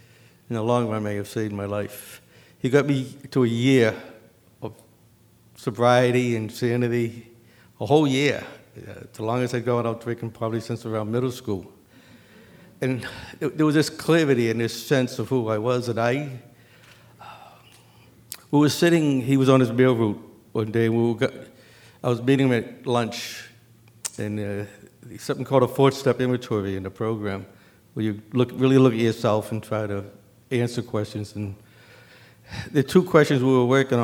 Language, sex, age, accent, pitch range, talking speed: English, male, 60-79, American, 110-130 Hz, 180 wpm